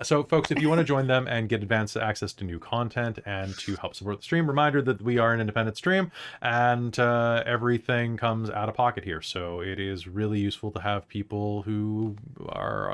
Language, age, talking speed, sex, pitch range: English, 20-39, 215 wpm, male, 95-125 Hz